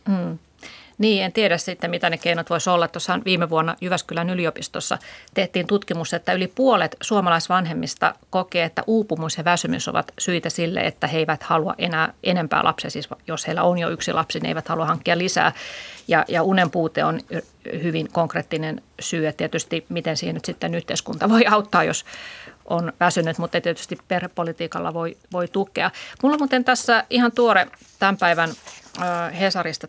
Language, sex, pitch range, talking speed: Finnish, female, 165-195 Hz, 165 wpm